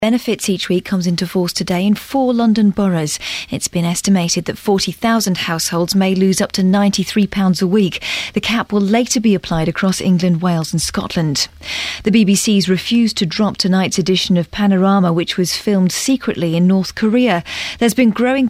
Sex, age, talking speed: female, 40-59, 175 wpm